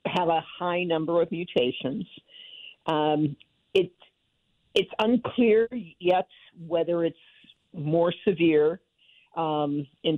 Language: English